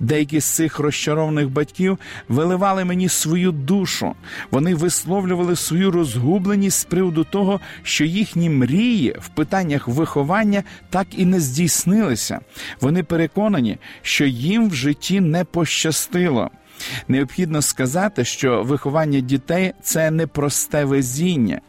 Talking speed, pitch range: 120 wpm, 135-175 Hz